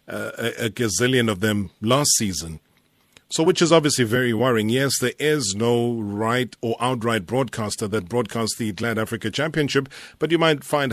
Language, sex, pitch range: English, male, 110-130 Hz